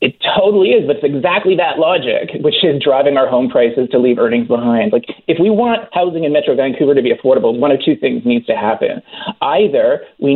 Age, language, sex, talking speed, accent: 30-49, English, male, 220 wpm, American